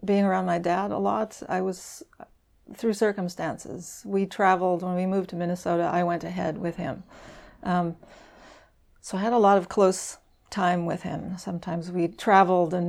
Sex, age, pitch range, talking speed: female, 40-59, 170-195 Hz, 170 wpm